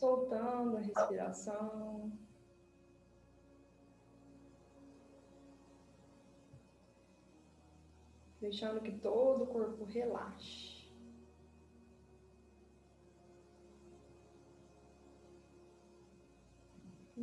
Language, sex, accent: Portuguese, female, Brazilian